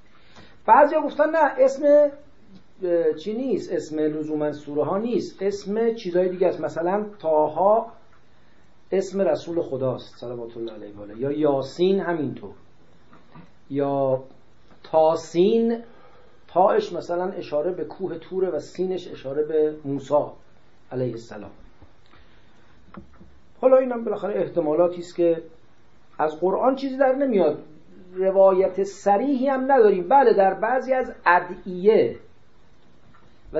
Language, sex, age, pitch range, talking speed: English, male, 40-59, 145-200 Hz, 115 wpm